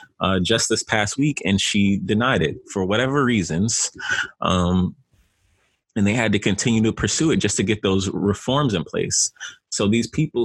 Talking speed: 180 wpm